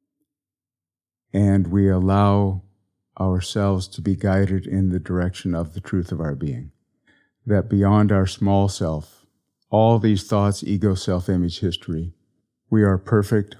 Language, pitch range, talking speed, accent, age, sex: English, 95-105 Hz, 130 wpm, American, 50-69, male